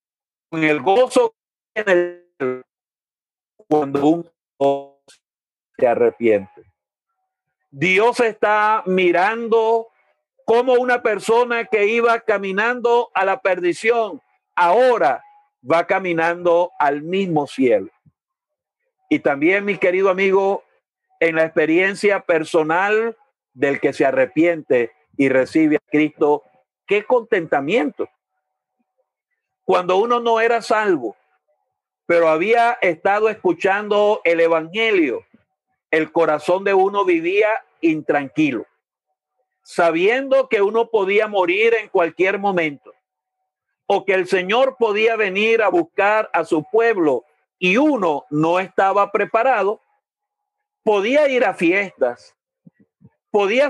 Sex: male